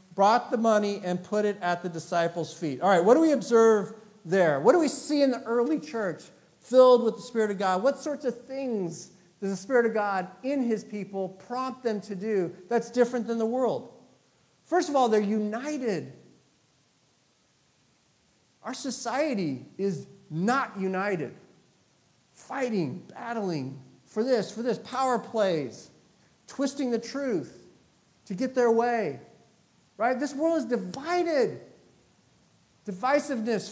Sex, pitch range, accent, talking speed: male, 205-260 Hz, American, 150 wpm